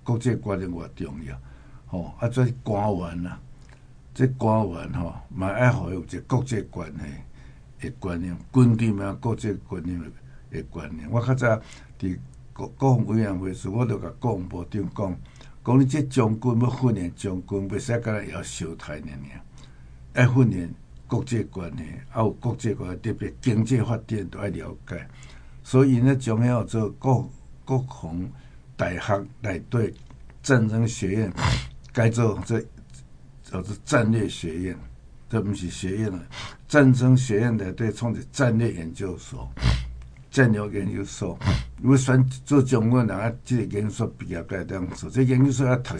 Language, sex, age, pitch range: Chinese, male, 60-79, 90-125 Hz